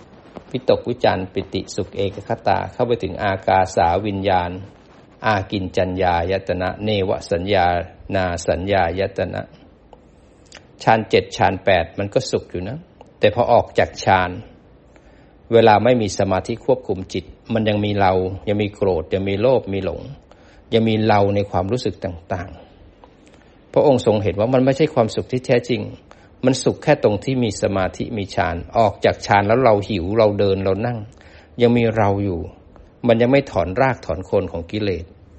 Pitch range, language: 95-115 Hz, Thai